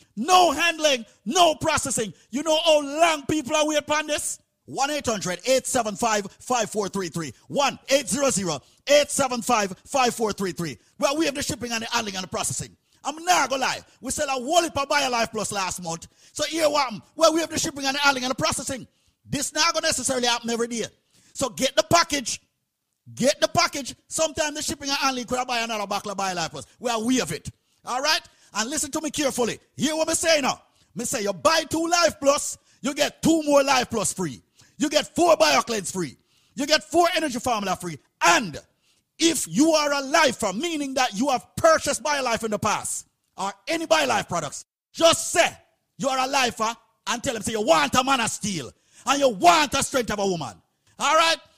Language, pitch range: English, 225-310 Hz